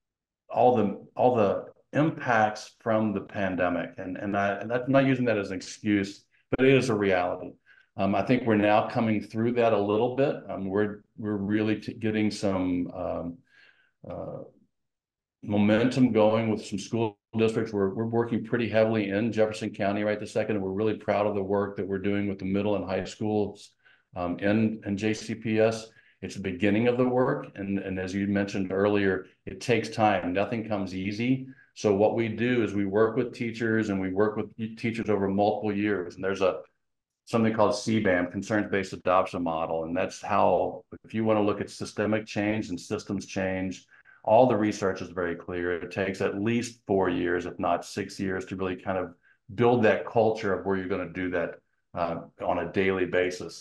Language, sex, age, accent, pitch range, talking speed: English, male, 50-69, American, 95-110 Hz, 195 wpm